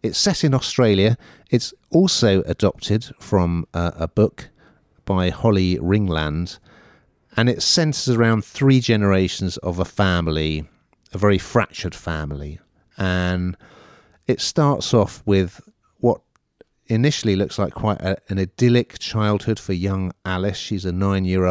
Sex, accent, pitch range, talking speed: male, British, 85-110 Hz, 130 wpm